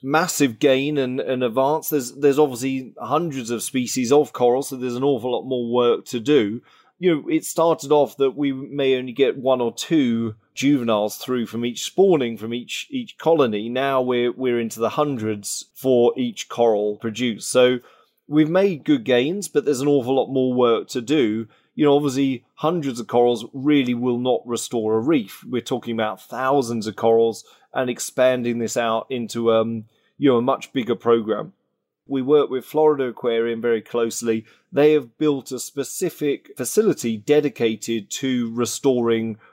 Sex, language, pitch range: male, English, 115-145 Hz